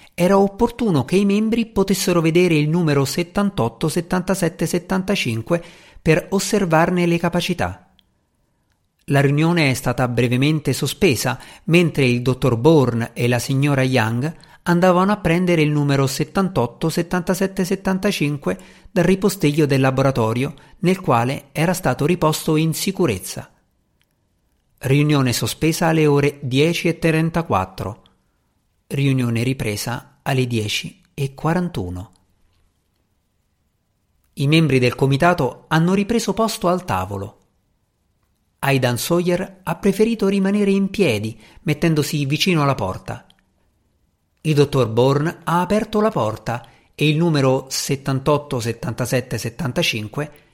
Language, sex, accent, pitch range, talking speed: Italian, male, native, 120-175 Hz, 110 wpm